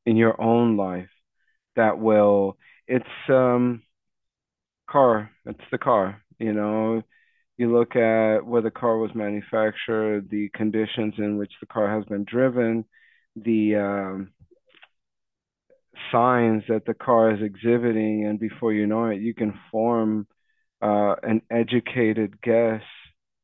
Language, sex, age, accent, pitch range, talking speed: English, male, 40-59, American, 100-115 Hz, 130 wpm